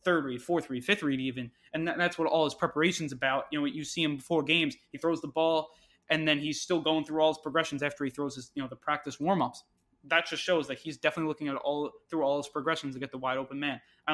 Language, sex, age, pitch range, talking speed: English, male, 20-39, 140-160 Hz, 270 wpm